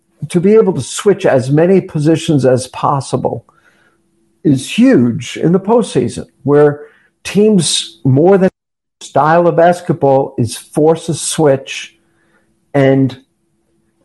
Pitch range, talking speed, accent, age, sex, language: 130-170 Hz, 115 wpm, American, 50-69, male, English